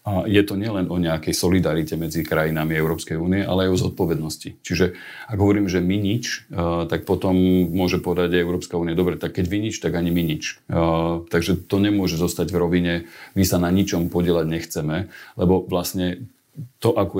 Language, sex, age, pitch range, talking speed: Slovak, male, 40-59, 85-95 Hz, 185 wpm